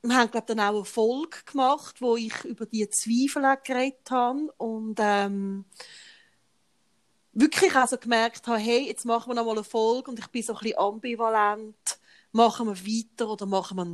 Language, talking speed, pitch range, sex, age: German, 180 wpm, 205-250 Hz, female, 30-49